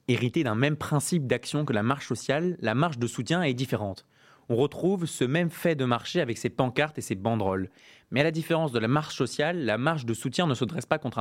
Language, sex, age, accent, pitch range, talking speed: French, male, 20-39, French, 120-150 Hz, 240 wpm